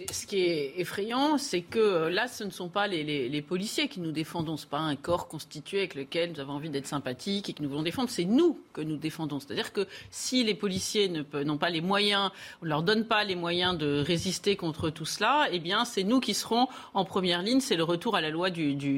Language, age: French, 40-59